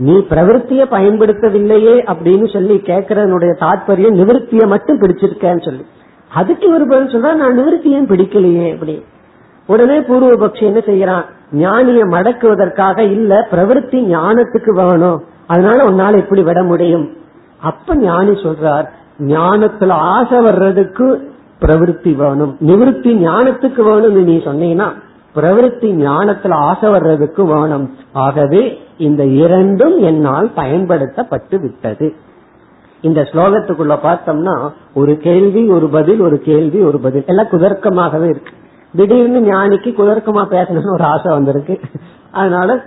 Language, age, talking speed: Tamil, 50-69, 100 wpm